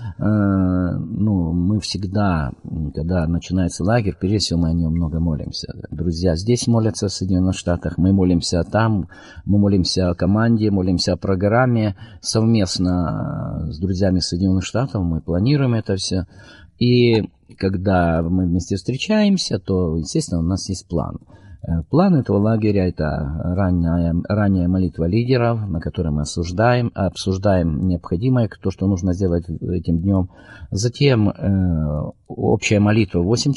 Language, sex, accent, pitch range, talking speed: Russian, male, native, 85-110 Hz, 130 wpm